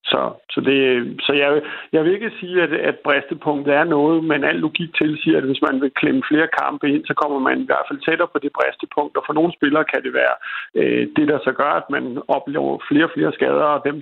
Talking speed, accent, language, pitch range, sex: 250 wpm, native, Danish, 140-165 Hz, male